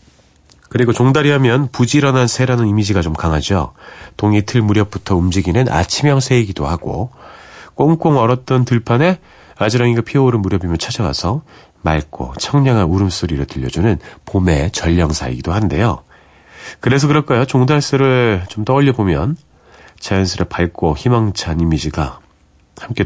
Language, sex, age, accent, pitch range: Korean, male, 40-59, native, 80-125 Hz